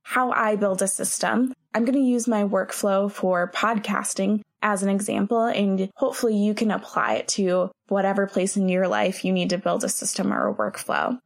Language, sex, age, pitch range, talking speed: English, female, 20-39, 185-215 Hz, 195 wpm